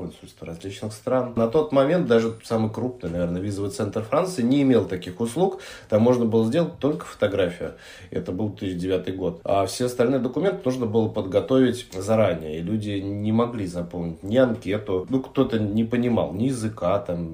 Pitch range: 100-130 Hz